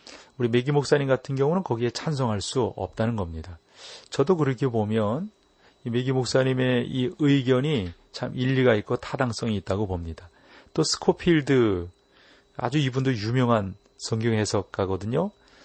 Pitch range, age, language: 105-135 Hz, 40-59, Korean